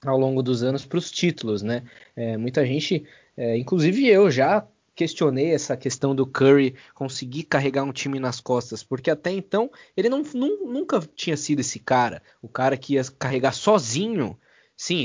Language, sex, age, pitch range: Portuguese, male, 20-39, 125-165 Hz